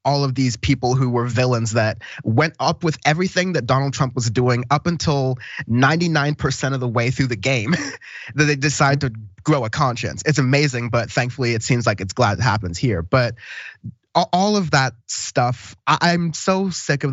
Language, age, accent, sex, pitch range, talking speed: English, 20-39, American, male, 115-145 Hz, 195 wpm